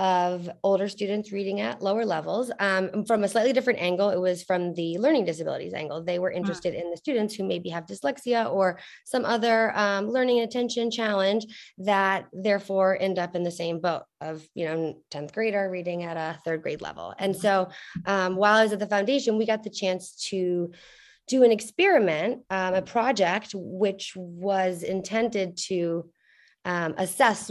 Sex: female